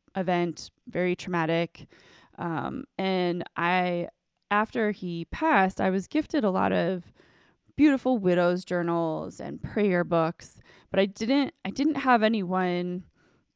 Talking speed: 125 wpm